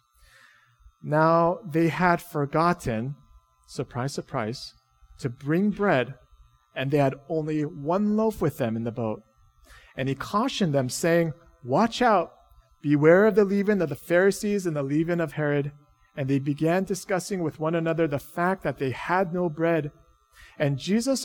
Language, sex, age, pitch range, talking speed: English, male, 40-59, 130-195 Hz, 155 wpm